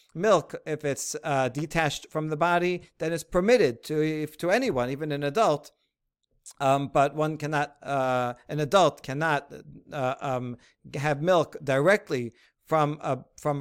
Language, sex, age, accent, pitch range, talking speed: English, male, 50-69, American, 140-165 Hz, 150 wpm